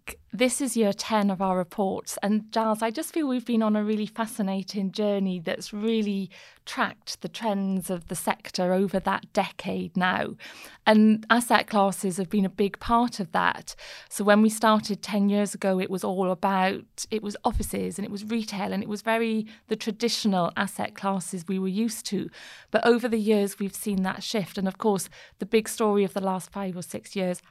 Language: English